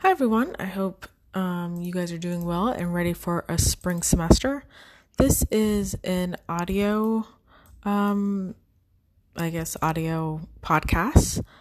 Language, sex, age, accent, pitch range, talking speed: English, female, 20-39, American, 160-190 Hz, 130 wpm